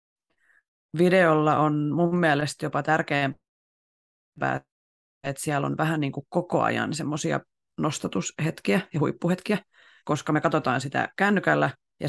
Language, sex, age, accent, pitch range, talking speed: Finnish, female, 30-49, native, 135-170 Hz, 115 wpm